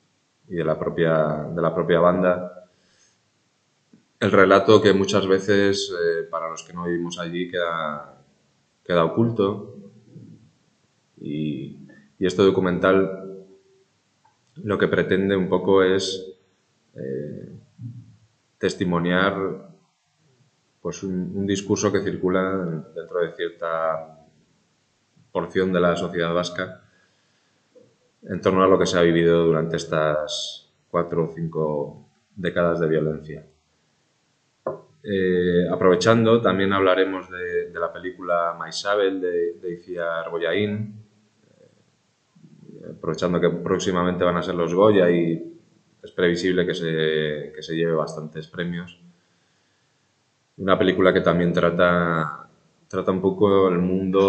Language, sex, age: Spanish, male, 20-39